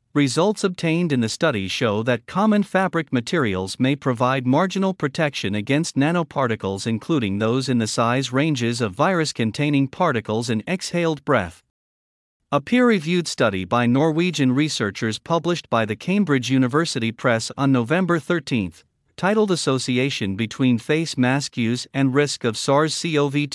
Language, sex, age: English, male, 50-69